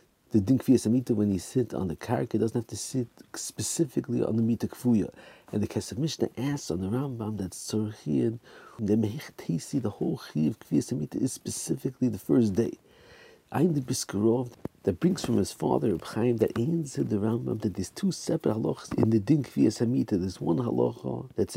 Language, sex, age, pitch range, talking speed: English, male, 50-69, 105-130 Hz, 175 wpm